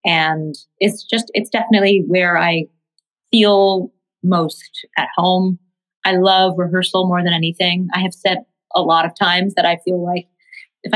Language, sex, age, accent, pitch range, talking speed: English, female, 30-49, American, 160-190 Hz, 160 wpm